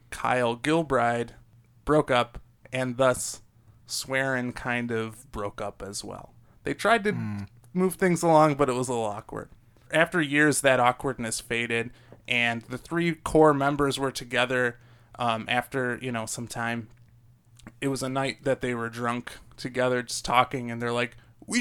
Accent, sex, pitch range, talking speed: American, male, 115-140 Hz, 160 wpm